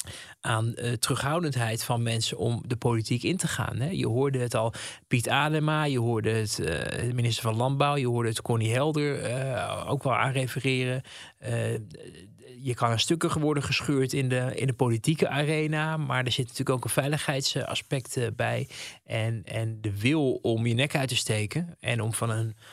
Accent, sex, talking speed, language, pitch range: Dutch, male, 180 wpm, Dutch, 115-135 Hz